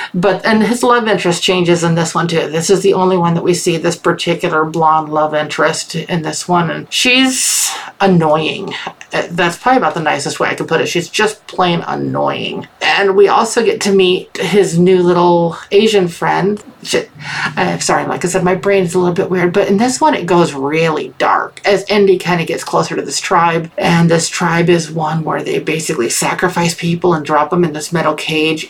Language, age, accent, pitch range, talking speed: English, 50-69, American, 165-200 Hz, 205 wpm